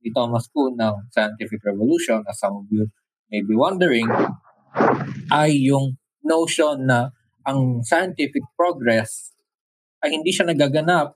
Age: 20-39